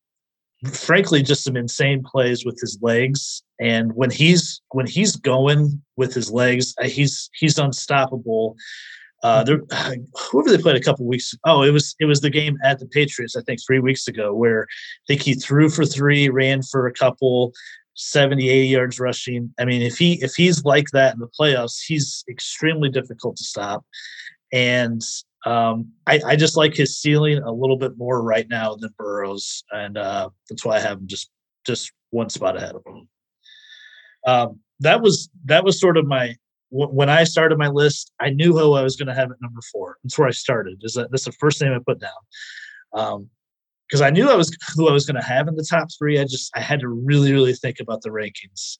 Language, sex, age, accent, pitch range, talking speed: English, male, 30-49, American, 125-150 Hz, 205 wpm